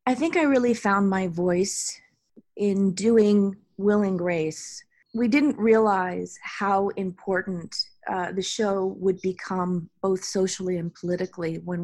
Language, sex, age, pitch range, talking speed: English, female, 30-49, 175-195 Hz, 130 wpm